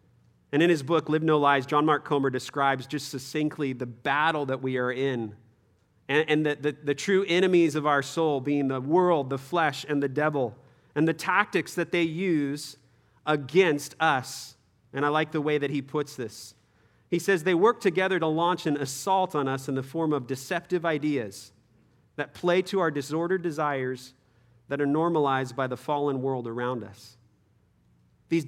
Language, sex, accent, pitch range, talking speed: English, male, American, 130-175 Hz, 185 wpm